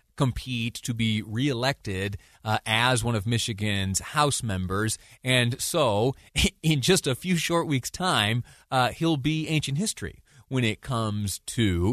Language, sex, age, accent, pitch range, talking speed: English, male, 30-49, American, 85-125 Hz, 145 wpm